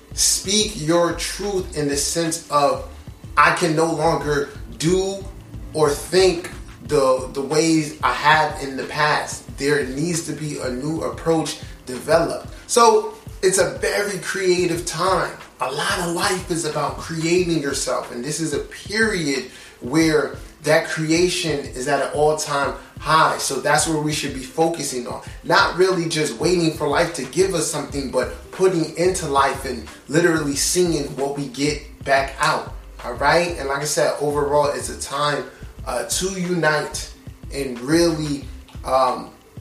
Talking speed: 155 wpm